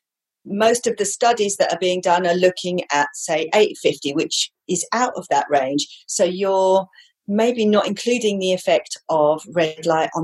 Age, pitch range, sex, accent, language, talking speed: 40-59, 155-205 Hz, female, British, English, 175 wpm